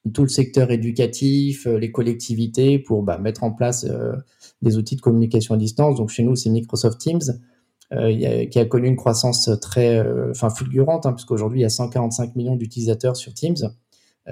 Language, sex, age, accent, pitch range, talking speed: French, male, 20-39, French, 115-140 Hz, 190 wpm